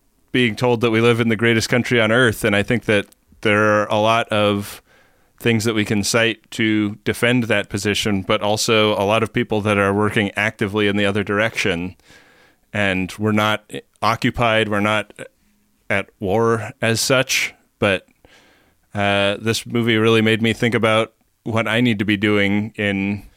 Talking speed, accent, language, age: 175 wpm, American, English, 30-49